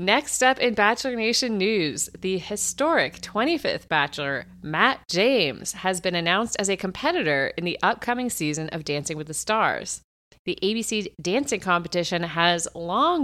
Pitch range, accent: 170-250 Hz, American